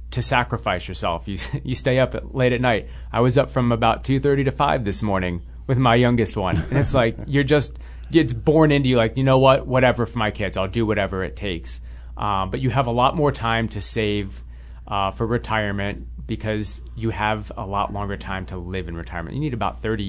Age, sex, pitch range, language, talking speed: 30-49, male, 95-120 Hz, English, 225 wpm